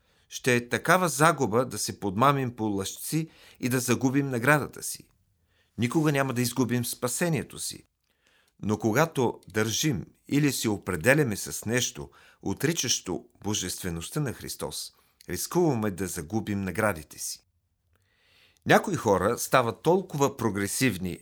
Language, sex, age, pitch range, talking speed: Bulgarian, male, 50-69, 100-135 Hz, 120 wpm